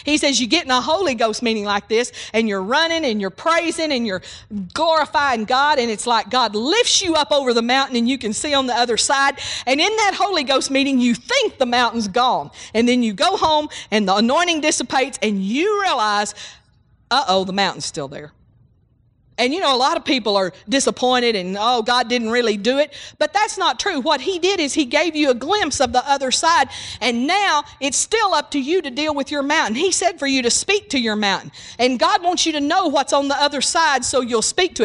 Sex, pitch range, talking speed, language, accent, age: female, 235-320 Hz, 235 wpm, English, American, 50-69